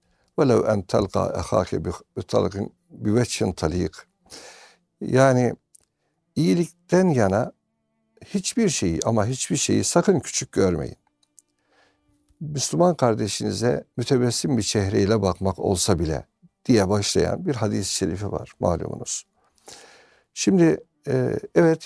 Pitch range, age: 100-145 Hz, 60-79